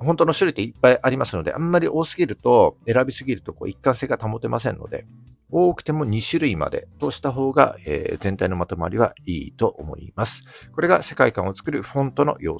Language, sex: Japanese, male